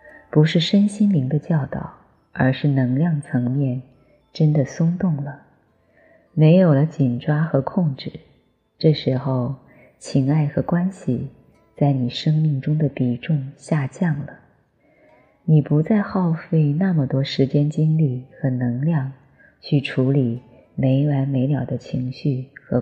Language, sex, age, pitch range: Chinese, female, 20-39, 130-155 Hz